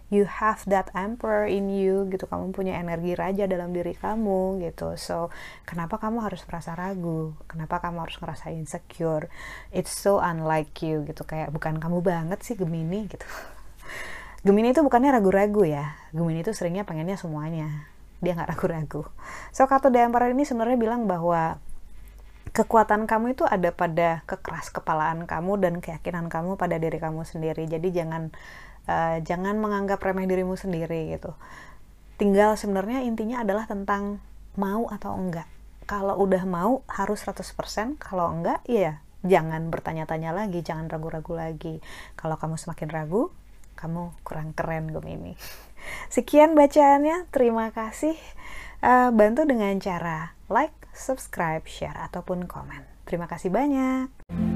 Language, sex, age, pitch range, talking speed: Indonesian, female, 20-39, 165-210 Hz, 145 wpm